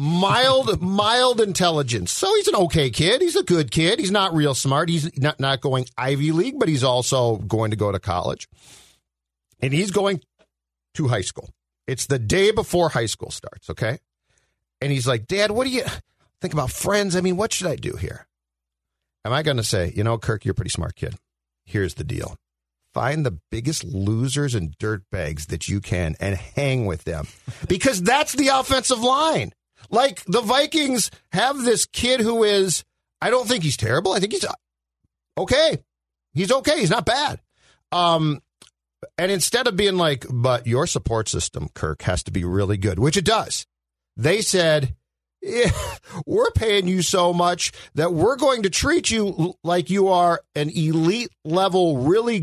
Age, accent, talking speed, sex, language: 50-69, American, 180 wpm, male, English